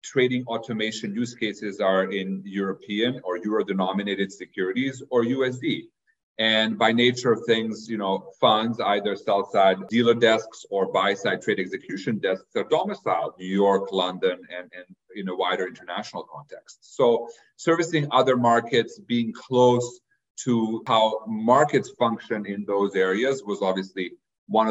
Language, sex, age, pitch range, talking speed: English, male, 40-59, 105-135 Hz, 140 wpm